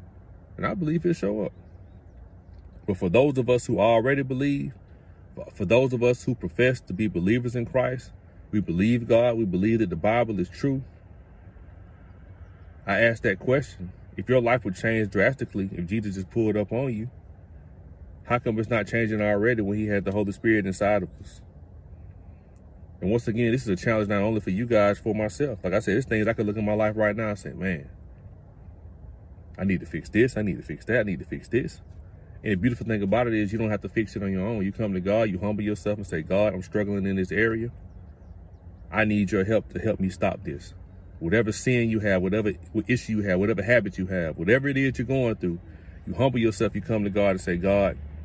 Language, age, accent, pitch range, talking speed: English, 30-49, American, 90-110 Hz, 225 wpm